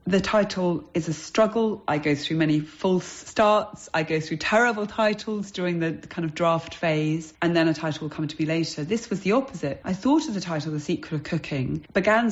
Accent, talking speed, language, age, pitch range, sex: British, 220 wpm, English, 40-59, 155-210 Hz, female